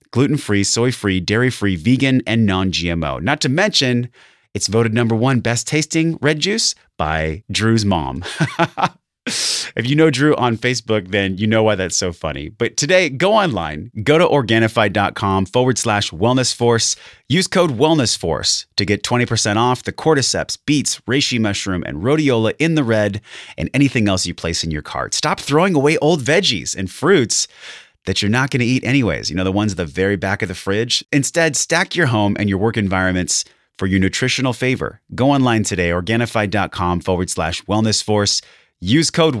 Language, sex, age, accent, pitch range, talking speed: English, male, 30-49, American, 95-130 Hz, 170 wpm